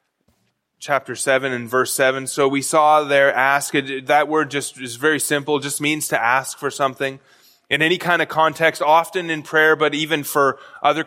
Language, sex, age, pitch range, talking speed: English, male, 20-39, 150-195 Hz, 185 wpm